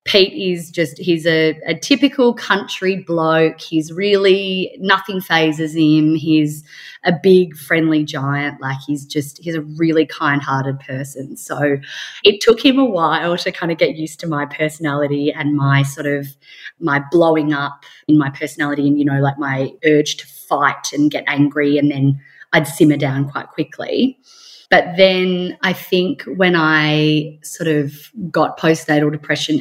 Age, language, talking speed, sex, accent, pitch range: 20-39, English, 160 wpm, female, Australian, 140-165 Hz